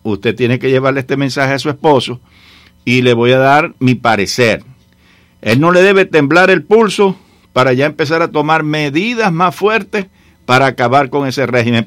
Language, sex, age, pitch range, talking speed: English, male, 60-79, 125-155 Hz, 180 wpm